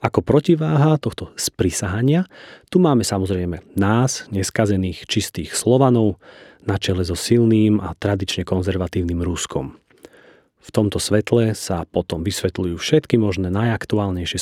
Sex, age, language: male, 40-59, Slovak